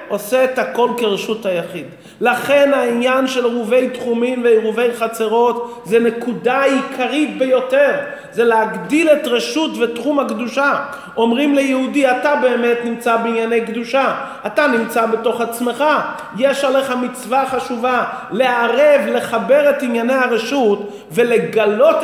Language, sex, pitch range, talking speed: Hebrew, male, 225-275 Hz, 115 wpm